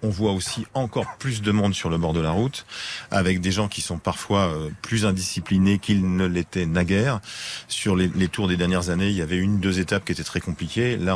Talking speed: 225 wpm